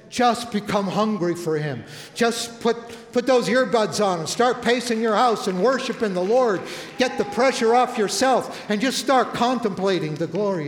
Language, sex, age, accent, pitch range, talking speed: English, male, 60-79, American, 180-230 Hz, 175 wpm